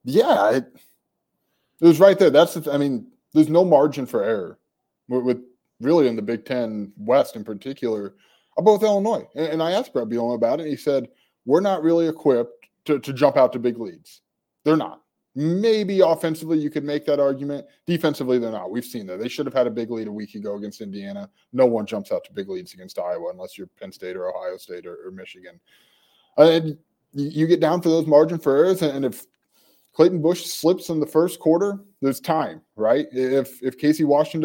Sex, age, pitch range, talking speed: male, 20-39, 125-170 Hz, 210 wpm